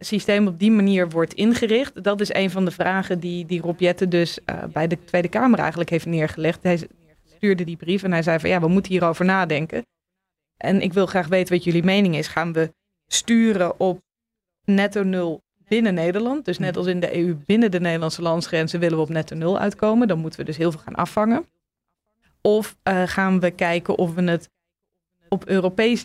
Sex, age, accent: female, 20-39, Dutch